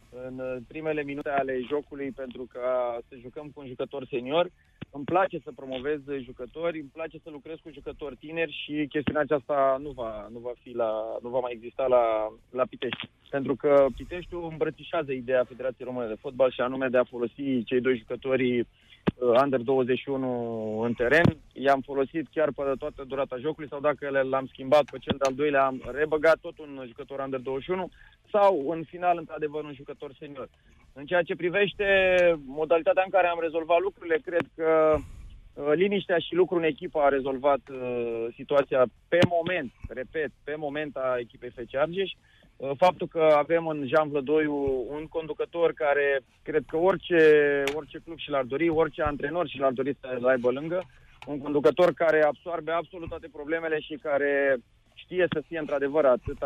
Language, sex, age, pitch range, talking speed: Romanian, male, 20-39, 130-160 Hz, 165 wpm